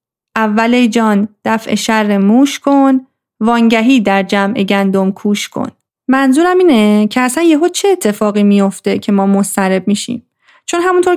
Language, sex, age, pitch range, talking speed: Persian, female, 30-49, 210-255 Hz, 140 wpm